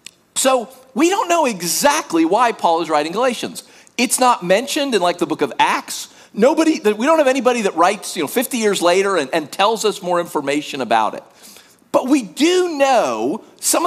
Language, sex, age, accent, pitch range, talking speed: English, male, 50-69, American, 220-340 Hz, 190 wpm